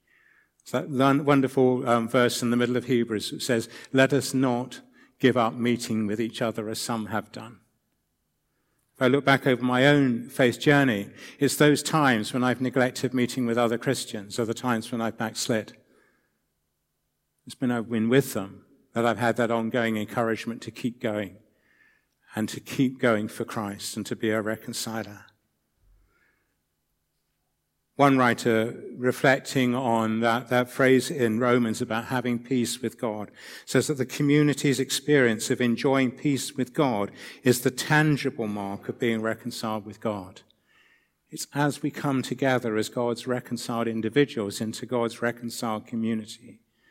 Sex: male